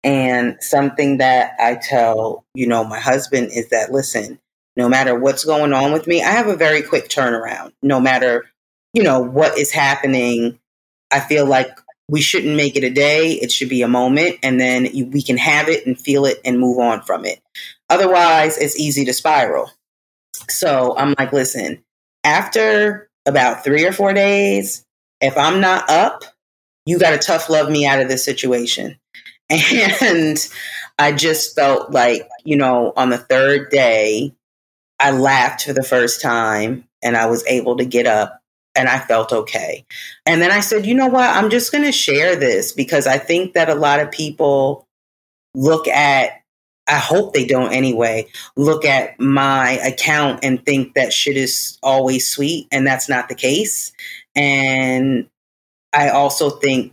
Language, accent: English, American